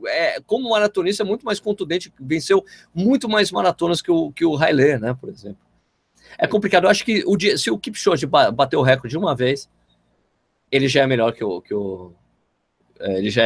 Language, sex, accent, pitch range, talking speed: Portuguese, male, Brazilian, 115-175 Hz, 190 wpm